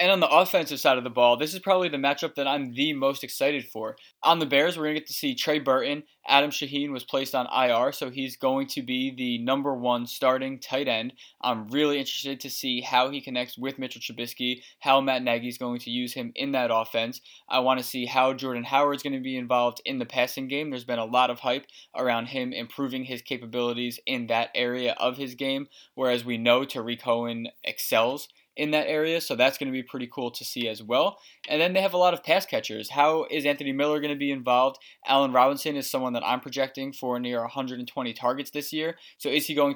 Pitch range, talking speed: 125-145 Hz, 235 wpm